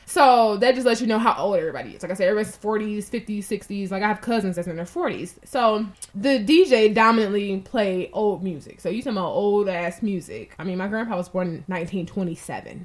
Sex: female